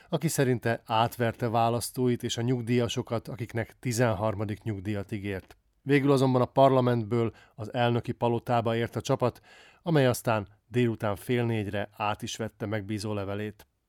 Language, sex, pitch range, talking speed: Hungarian, male, 110-130 Hz, 130 wpm